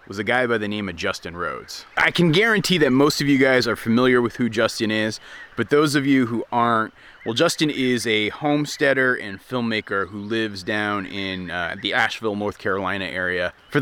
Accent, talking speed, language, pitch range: American, 205 wpm, English, 105-135 Hz